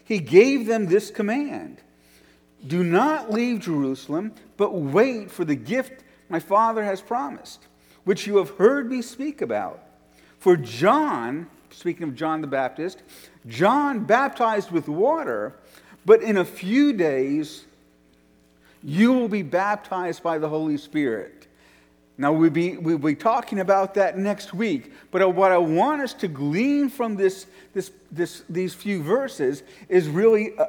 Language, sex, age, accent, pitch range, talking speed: English, male, 50-69, American, 165-235 Hz, 145 wpm